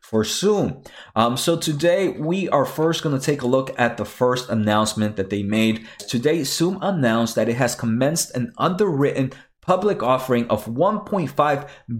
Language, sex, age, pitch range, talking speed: English, male, 30-49, 120-175 Hz, 165 wpm